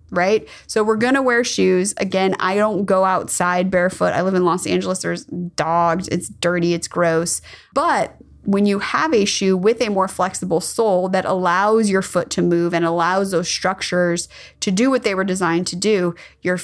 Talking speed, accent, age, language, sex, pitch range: 195 wpm, American, 20-39, English, female, 175-220 Hz